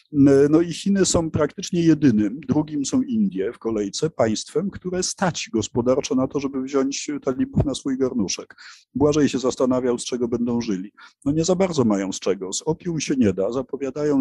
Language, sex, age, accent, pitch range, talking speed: Polish, male, 50-69, native, 110-140 Hz, 180 wpm